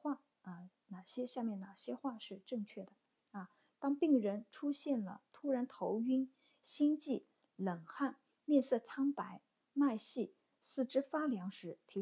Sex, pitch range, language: female, 190-255 Hz, Chinese